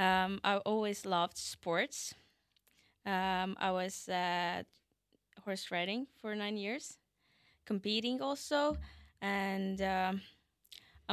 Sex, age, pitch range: female, 20-39, 185-220 Hz